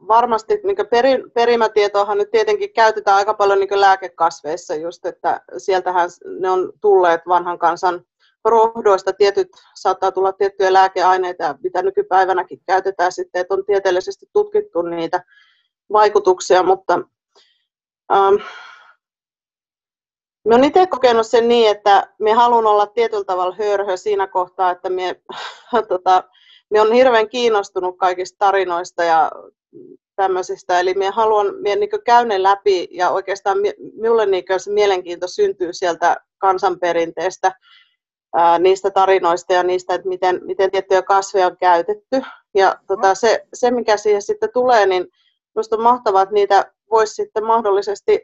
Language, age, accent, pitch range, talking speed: Finnish, 30-49, native, 185-230 Hz, 130 wpm